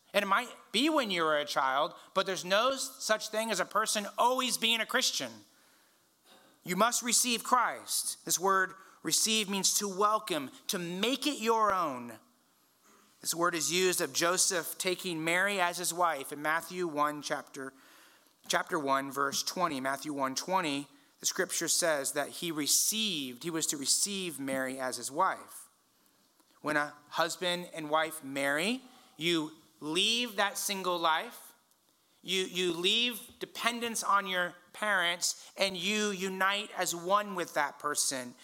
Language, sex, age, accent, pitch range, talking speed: English, male, 30-49, American, 155-200 Hz, 155 wpm